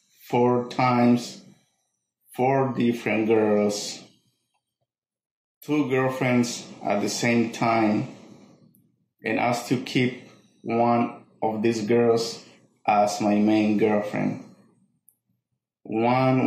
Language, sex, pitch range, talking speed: English, male, 110-125 Hz, 85 wpm